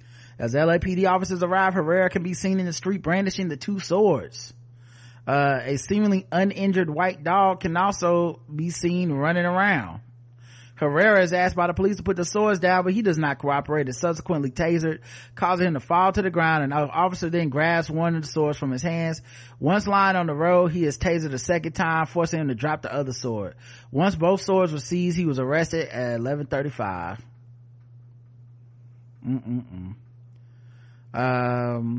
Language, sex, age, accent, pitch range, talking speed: English, male, 30-49, American, 120-170 Hz, 180 wpm